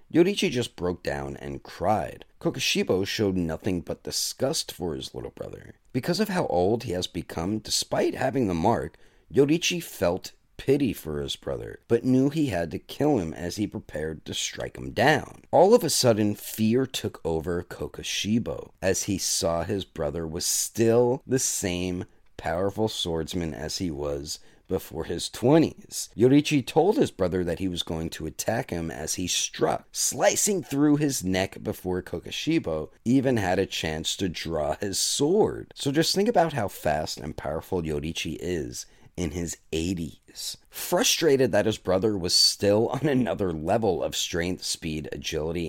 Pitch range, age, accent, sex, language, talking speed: 80-120 Hz, 40-59, American, male, English, 165 wpm